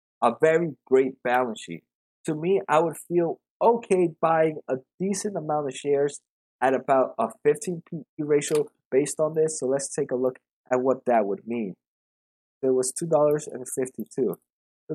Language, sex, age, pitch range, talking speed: English, male, 20-39, 130-160 Hz, 170 wpm